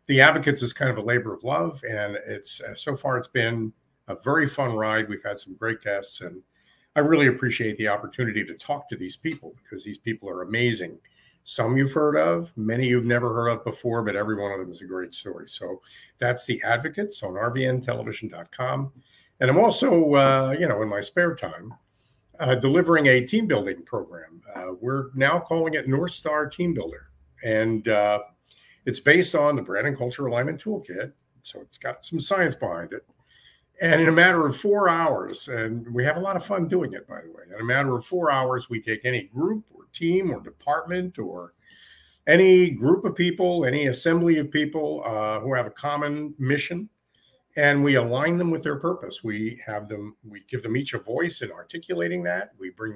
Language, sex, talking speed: English, male, 200 wpm